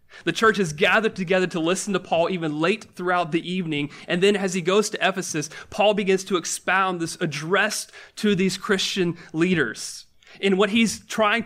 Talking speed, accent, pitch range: 185 wpm, American, 150-190 Hz